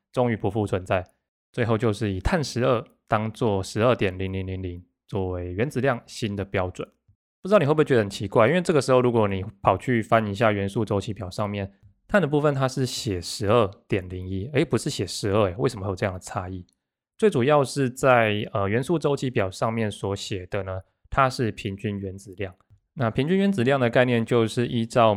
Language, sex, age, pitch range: Chinese, male, 20-39, 100-125 Hz